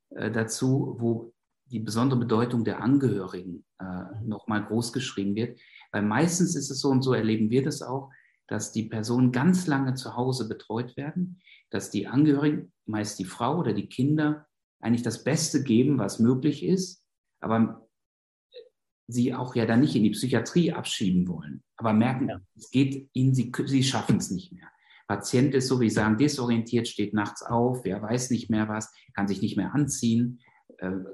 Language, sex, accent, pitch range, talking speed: German, male, German, 110-135 Hz, 175 wpm